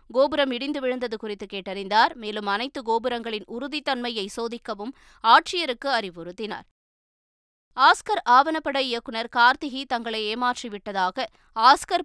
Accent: native